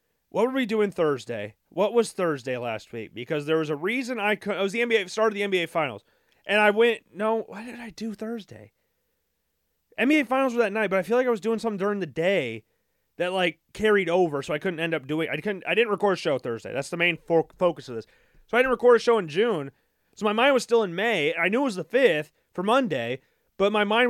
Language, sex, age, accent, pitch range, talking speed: English, male, 30-49, American, 165-225 Hz, 250 wpm